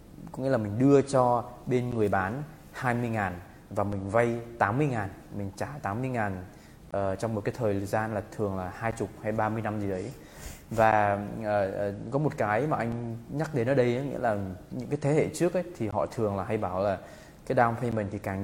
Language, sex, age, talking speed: English, male, 20-39, 215 wpm